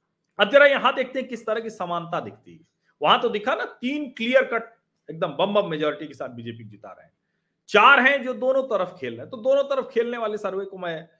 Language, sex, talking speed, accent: Hindi, male, 105 wpm, native